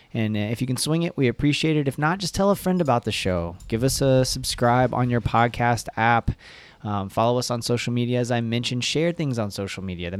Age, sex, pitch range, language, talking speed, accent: 20-39, male, 105-125 Hz, English, 240 wpm, American